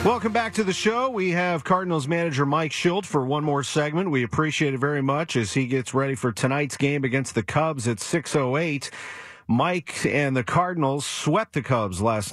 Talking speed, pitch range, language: 205 wpm, 115-160 Hz, English